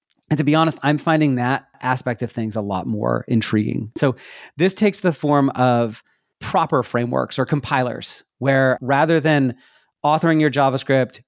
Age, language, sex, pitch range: 30-49, English, male, 120-150 Hz